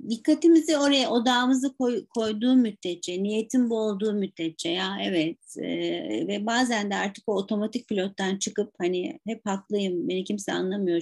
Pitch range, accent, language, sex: 190-255 Hz, native, Turkish, female